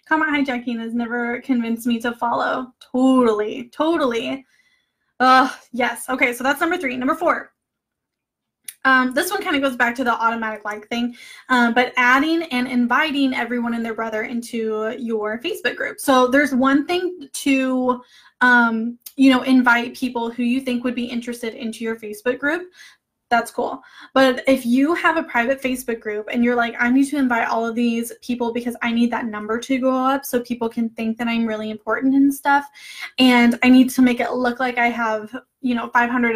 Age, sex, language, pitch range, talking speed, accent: 10-29, female, English, 235-270 Hz, 190 wpm, American